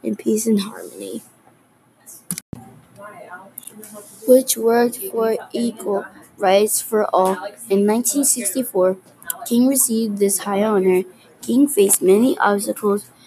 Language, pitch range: English, 190-230 Hz